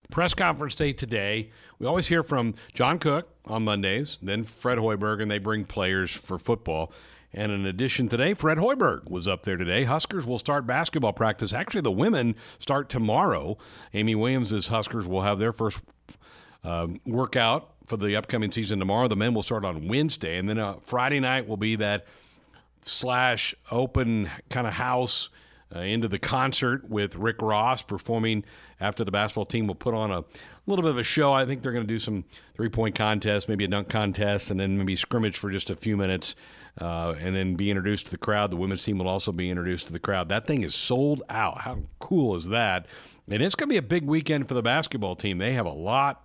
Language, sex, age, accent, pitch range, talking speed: English, male, 50-69, American, 100-125 Hz, 210 wpm